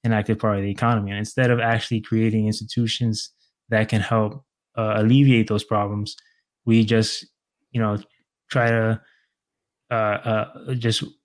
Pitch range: 110-125 Hz